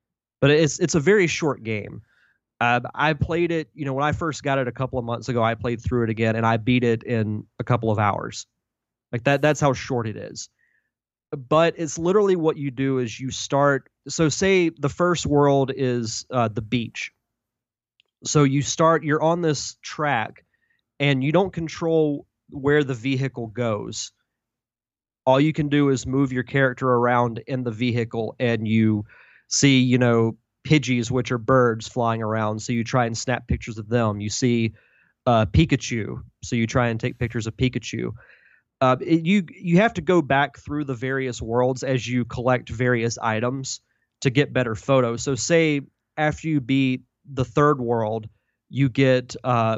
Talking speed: 185 wpm